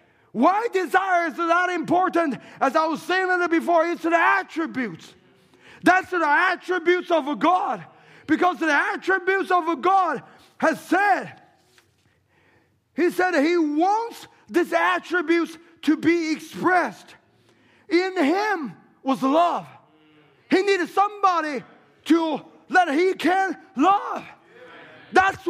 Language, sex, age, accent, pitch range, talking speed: English, male, 30-49, American, 305-365 Hz, 115 wpm